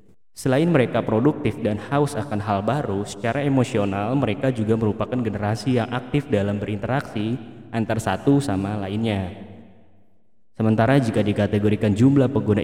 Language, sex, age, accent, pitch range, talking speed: Indonesian, male, 20-39, native, 105-130 Hz, 130 wpm